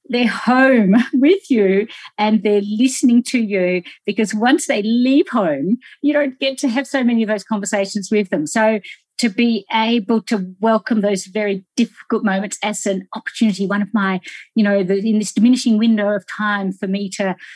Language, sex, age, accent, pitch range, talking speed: English, female, 50-69, Australian, 195-235 Hz, 180 wpm